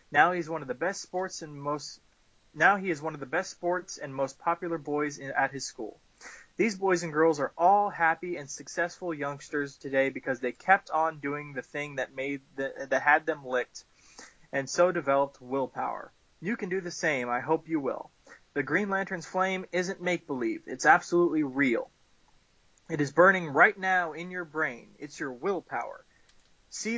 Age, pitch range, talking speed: 20-39, 135-175 Hz, 185 wpm